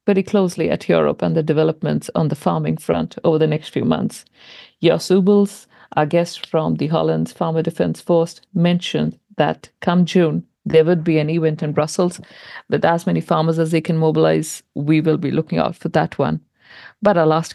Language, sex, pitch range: English, female, 155-185 Hz